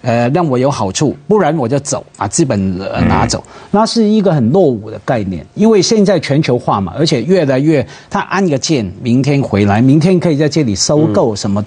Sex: male